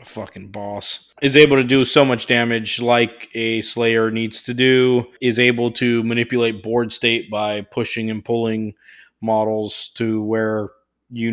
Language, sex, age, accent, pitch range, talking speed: English, male, 20-39, American, 115-130 Hz, 155 wpm